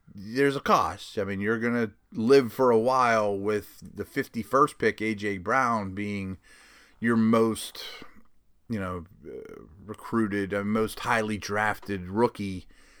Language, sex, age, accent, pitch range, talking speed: English, male, 30-49, American, 105-125 Hz, 135 wpm